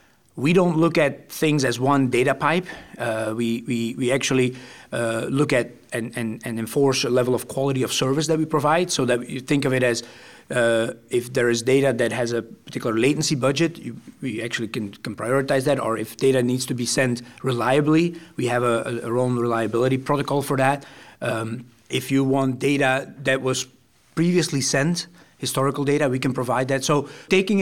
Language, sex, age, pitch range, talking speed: English, male, 40-59, 125-150 Hz, 195 wpm